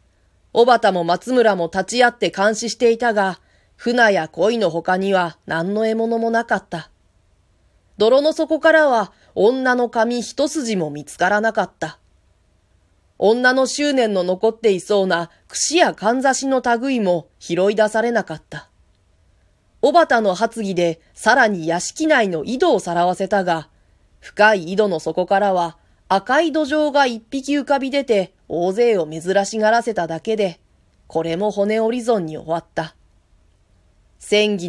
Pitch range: 160-230 Hz